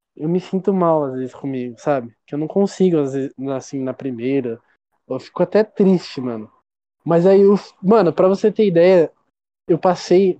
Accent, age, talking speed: Brazilian, 20-39, 185 wpm